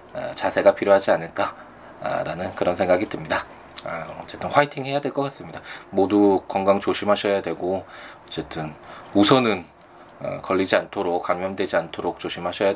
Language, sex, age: Korean, male, 20-39